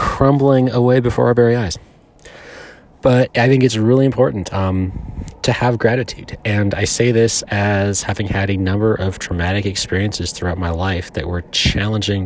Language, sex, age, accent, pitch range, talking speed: English, male, 30-49, American, 95-125 Hz, 165 wpm